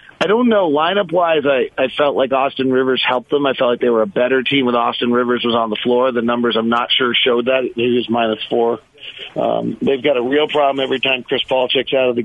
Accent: American